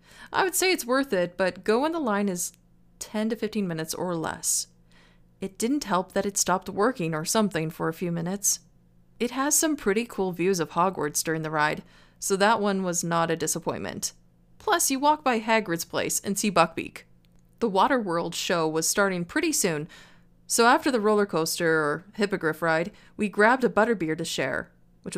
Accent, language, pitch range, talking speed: American, English, 160-235 Hz, 190 wpm